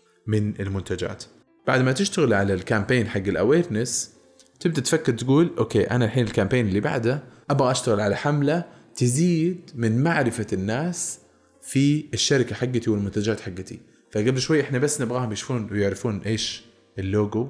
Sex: male